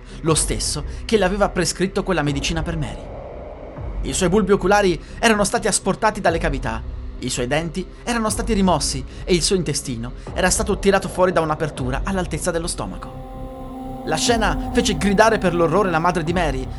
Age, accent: 30-49, native